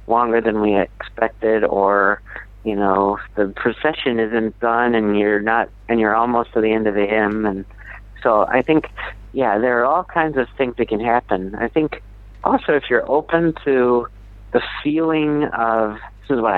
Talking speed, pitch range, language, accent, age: 180 wpm, 100-120 Hz, English, American, 50-69